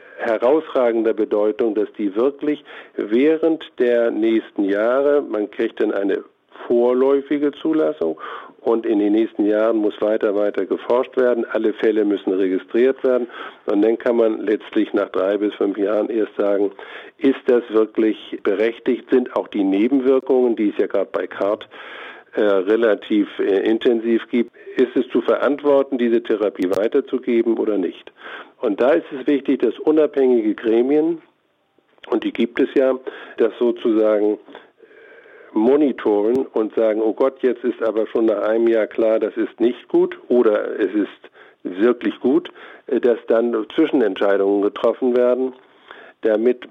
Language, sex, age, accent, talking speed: German, male, 50-69, German, 145 wpm